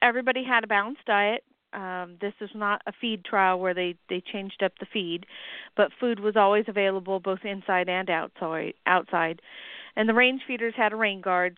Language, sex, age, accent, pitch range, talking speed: English, female, 40-59, American, 185-230 Hz, 185 wpm